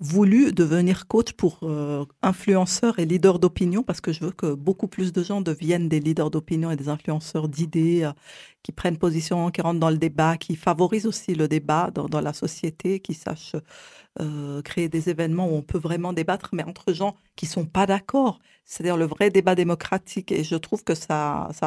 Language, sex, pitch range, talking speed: French, female, 155-190 Hz, 205 wpm